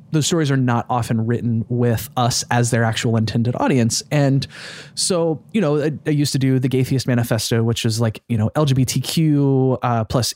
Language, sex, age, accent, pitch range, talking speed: English, male, 20-39, American, 115-145 Hz, 190 wpm